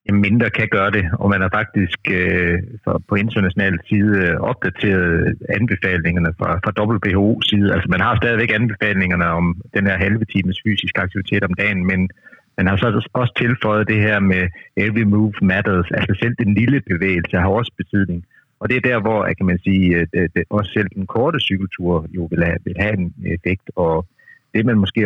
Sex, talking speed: male, 190 wpm